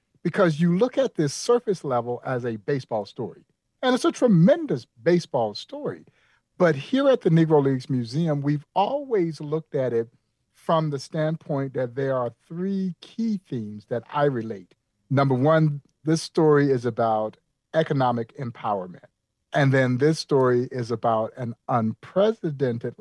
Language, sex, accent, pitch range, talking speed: English, male, American, 120-155 Hz, 150 wpm